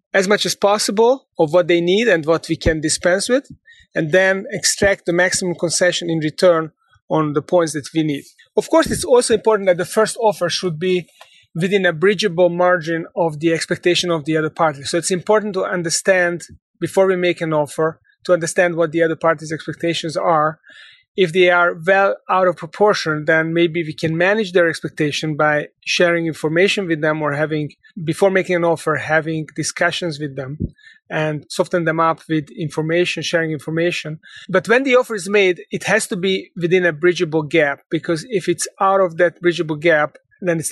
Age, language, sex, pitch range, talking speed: 30-49, English, male, 160-190 Hz, 190 wpm